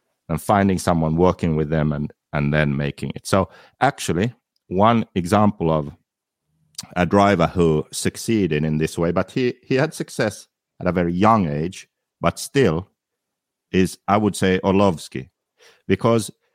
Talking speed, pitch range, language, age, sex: 150 wpm, 85-105 Hz, English, 50-69, male